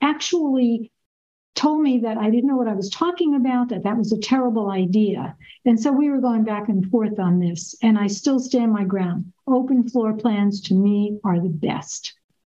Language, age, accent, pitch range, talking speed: English, 60-79, American, 200-245 Hz, 200 wpm